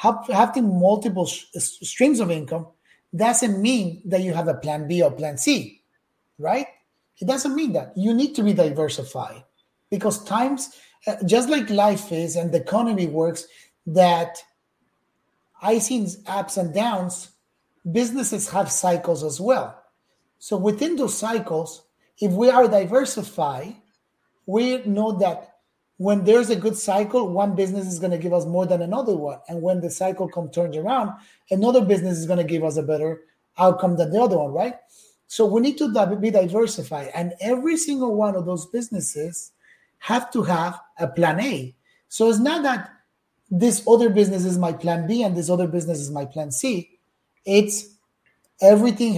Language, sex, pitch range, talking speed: English, male, 170-225 Hz, 165 wpm